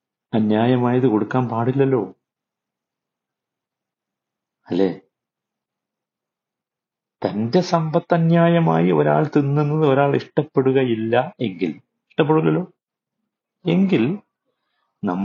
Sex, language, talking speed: male, Malayalam, 60 wpm